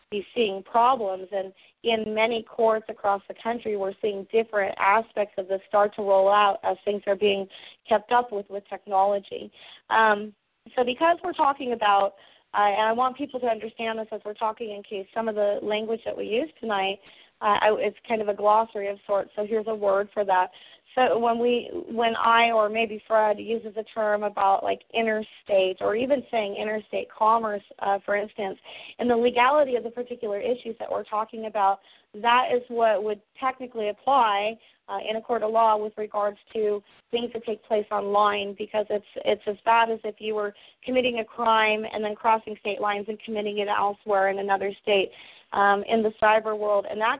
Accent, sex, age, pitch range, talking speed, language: American, female, 30-49, 205-225 Hz, 195 wpm, English